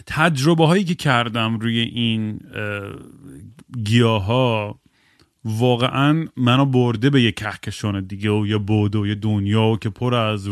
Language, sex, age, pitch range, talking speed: Persian, male, 30-49, 115-140 Hz, 135 wpm